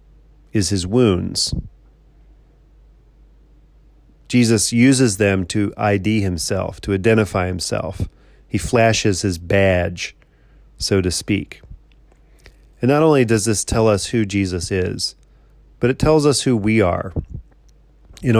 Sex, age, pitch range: male, 40-59, 95-120 Hz